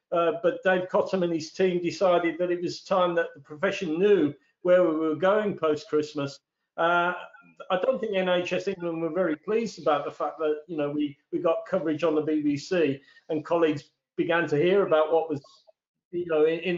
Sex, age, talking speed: male, 50-69, 200 wpm